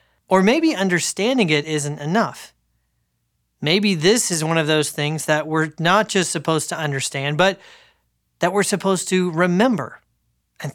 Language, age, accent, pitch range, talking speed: English, 30-49, American, 145-205 Hz, 150 wpm